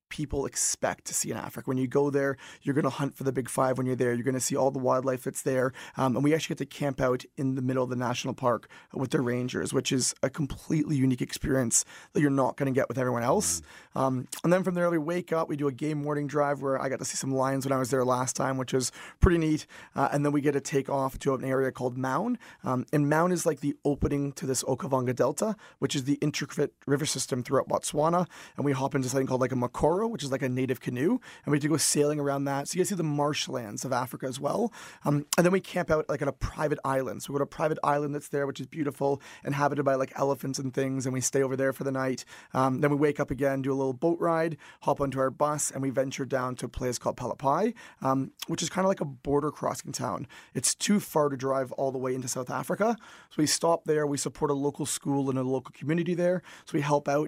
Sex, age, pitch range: male, 30-49, 130-150 Hz